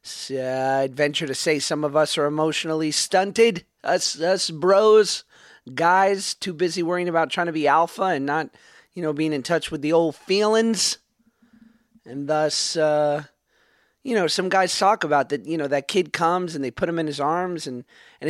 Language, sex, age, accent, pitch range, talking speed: English, male, 30-49, American, 145-190 Hz, 190 wpm